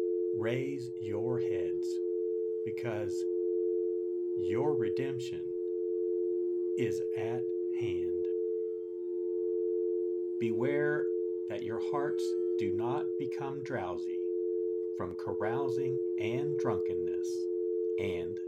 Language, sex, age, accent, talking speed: English, male, 50-69, American, 70 wpm